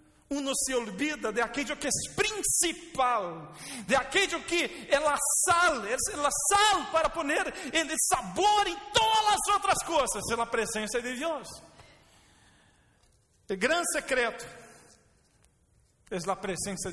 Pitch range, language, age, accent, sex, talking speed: 220-320 Hz, Spanish, 50-69, Brazilian, male, 130 wpm